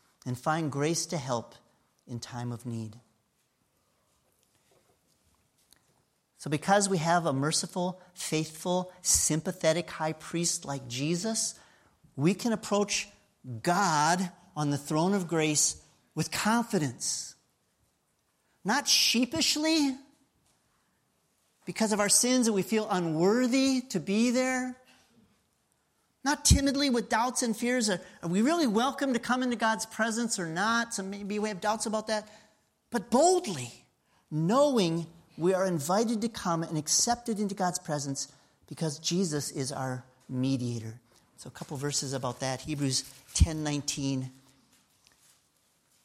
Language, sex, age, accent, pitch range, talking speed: English, male, 40-59, American, 150-220 Hz, 130 wpm